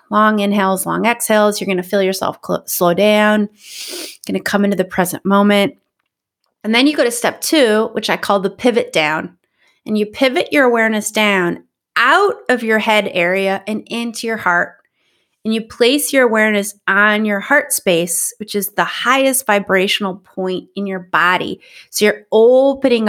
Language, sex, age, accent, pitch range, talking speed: English, female, 30-49, American, 205-265 Hz, 175 wpm